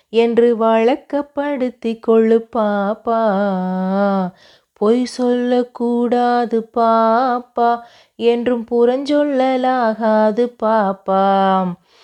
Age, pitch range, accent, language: 30-49, 200-230 Hz, native, Tamil